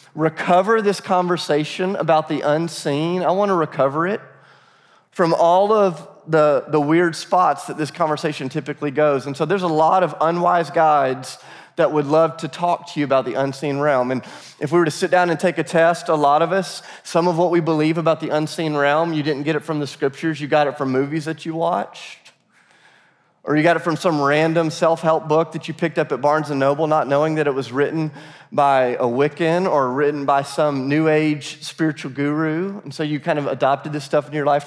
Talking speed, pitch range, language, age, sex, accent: 220 wpm, 145-170 Hz, English, 30-49, male, American